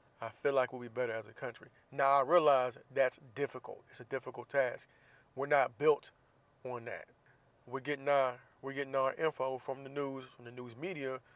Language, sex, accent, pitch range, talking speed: English, male, American, 120-140 Hz, 195 wpm